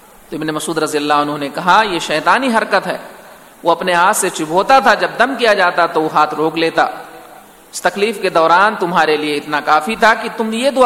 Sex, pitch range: male, 155-195 Hz